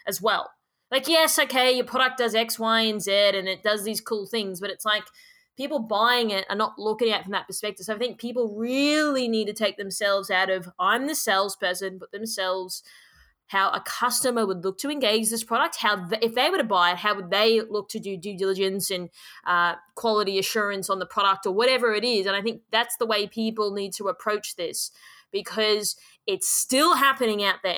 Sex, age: female, 20-39